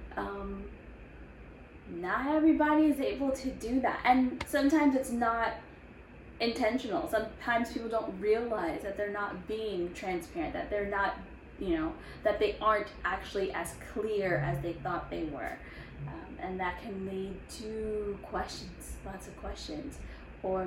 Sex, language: female, English